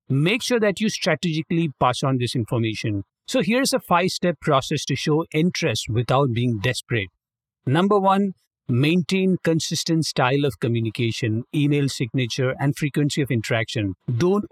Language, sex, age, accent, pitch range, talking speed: English, male, 50-69, Indian, 125-170 Hz, 145 wpm